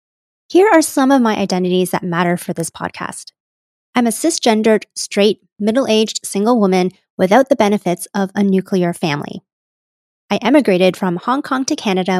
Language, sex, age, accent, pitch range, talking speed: English, female, 30-49, American, 180-230 Hz, 155 wpm